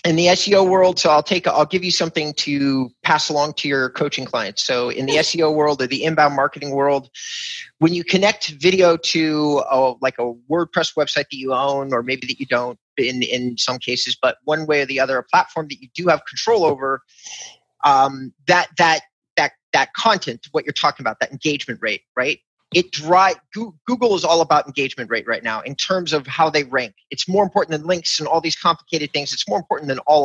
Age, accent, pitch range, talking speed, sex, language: 30-49, American, 135-180 Hz, 215 wpm, male, English